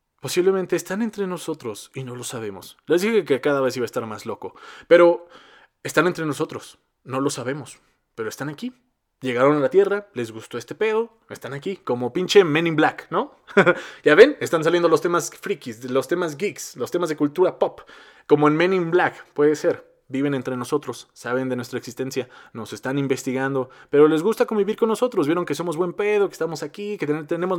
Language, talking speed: Spanish, 200 wpm